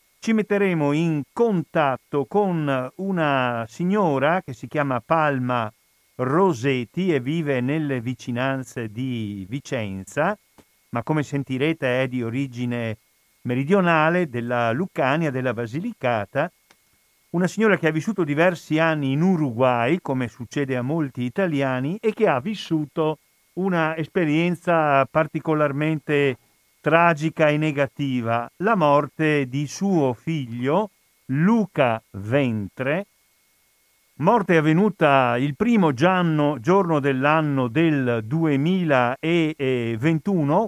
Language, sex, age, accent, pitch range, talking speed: Italian, male, 50-69, native, 130-170 Hz, 100 wpm